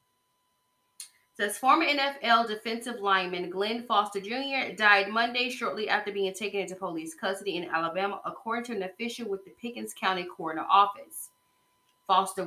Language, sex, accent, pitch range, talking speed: English, female, American, 185-230 Hz, 145 wpm